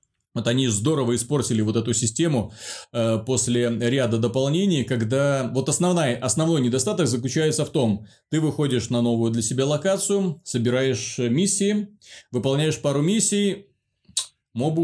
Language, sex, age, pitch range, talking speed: Russian, male, 20-39, 120-155 Hz, 125 wpm